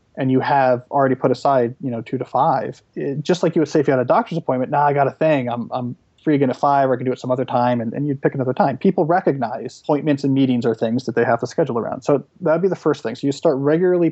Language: English